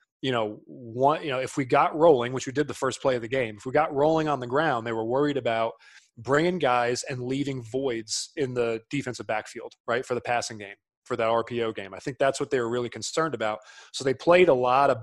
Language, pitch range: English, 125-145 Hz